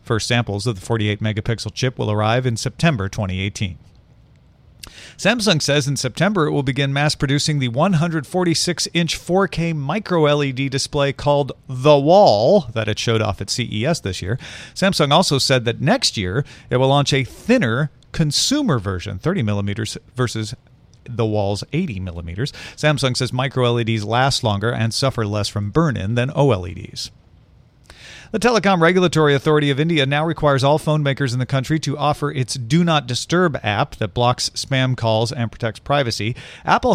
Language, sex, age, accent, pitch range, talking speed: English, male, 40-59, American, 115-155 Hz, 155 wpm